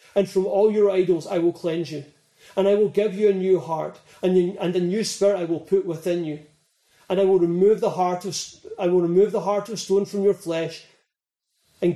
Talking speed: 230 wpm